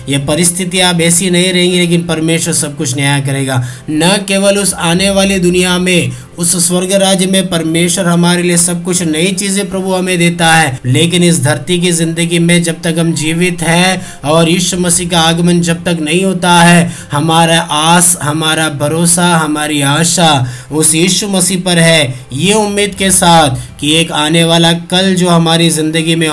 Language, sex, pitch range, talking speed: Hindi, male, 155-180 Hz, 170 wpm